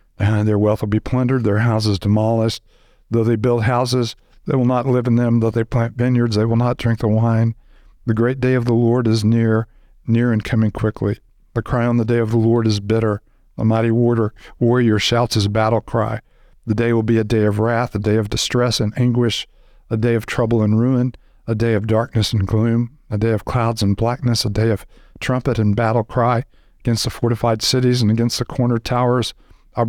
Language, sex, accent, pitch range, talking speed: English, male, American, 110-120 Hz, 215 wpm